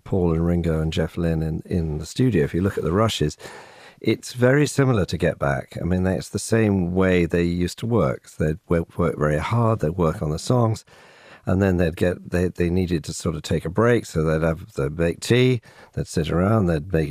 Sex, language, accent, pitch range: male, English, British, 80-100 Hz